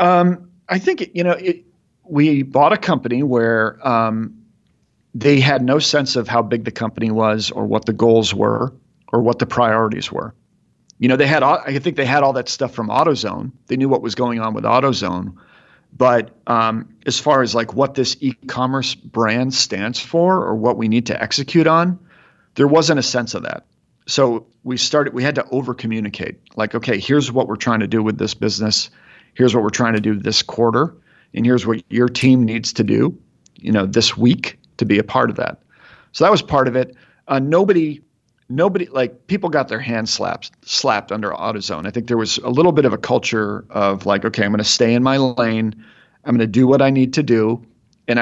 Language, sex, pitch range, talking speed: English, male, 110-140 Hz, 215 wpm